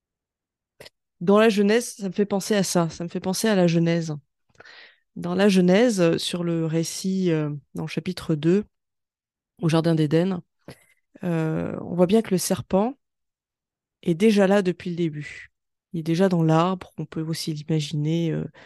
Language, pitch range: French, 160-195 Hz